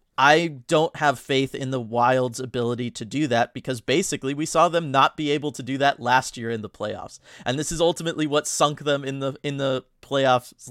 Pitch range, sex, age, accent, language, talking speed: 120-140 Hz, male, 30-49, American, English, 220 wpm